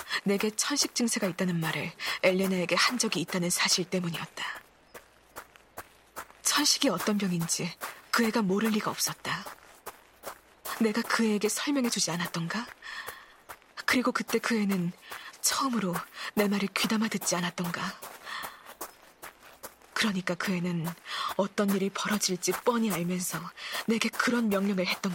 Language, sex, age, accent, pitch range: Korean, female, 20-39, native, 180-245 Hz